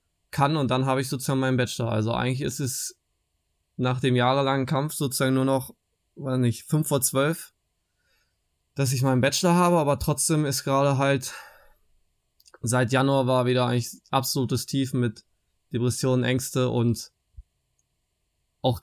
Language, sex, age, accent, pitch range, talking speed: German, male, 20-39, German, 115-130 Hz, 145 wpm